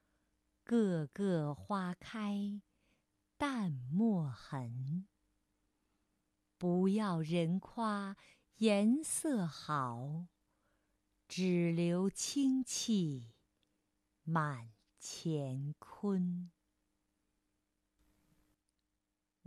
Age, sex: 50-69, female